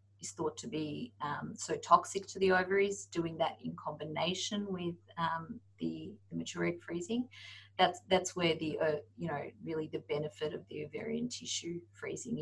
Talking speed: 165 wpm